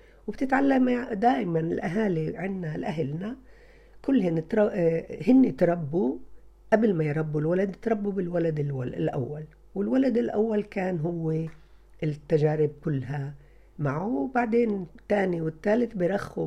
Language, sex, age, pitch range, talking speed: Arabic, female, 50-69, 160-225 Hz, 95 wpm